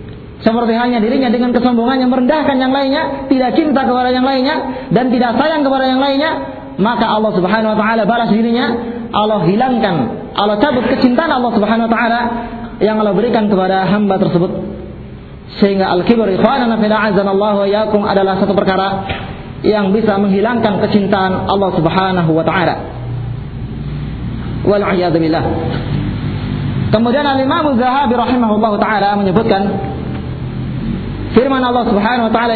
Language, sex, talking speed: Malay, male, 130 wpm